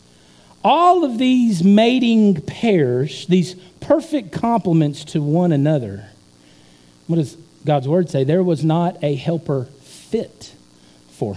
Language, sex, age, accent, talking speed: English, male, 50-69, American, 120 wpm